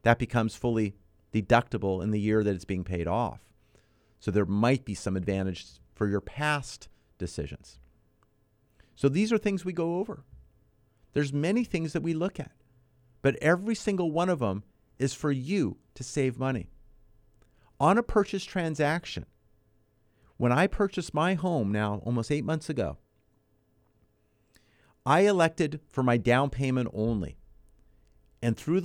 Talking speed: 150 wpm